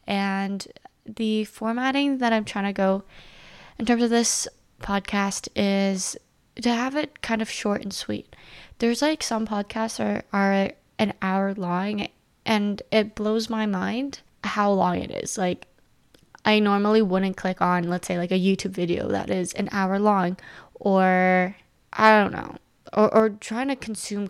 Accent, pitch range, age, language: American, 190-230 Hz, 10-29, English